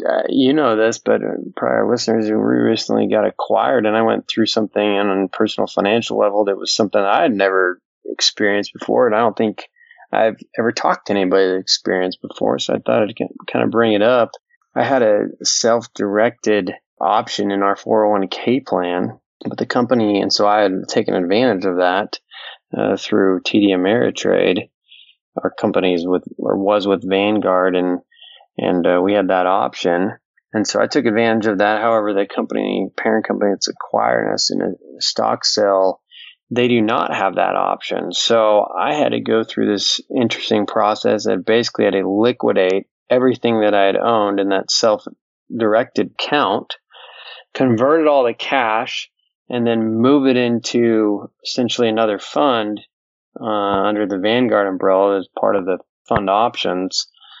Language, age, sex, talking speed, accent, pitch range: English, 20-39, male, 170 wpm, American, 95-115 Hz